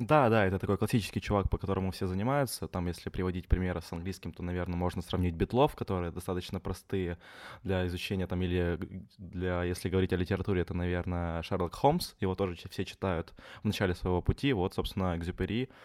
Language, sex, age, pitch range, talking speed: Ukrainian, male, 20-39, 90-105 Hz, 180 wpm